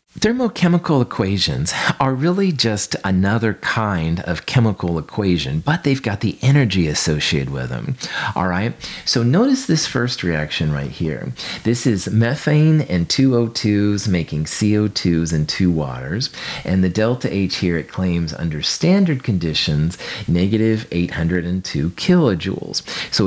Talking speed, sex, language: 135 wpm, male, English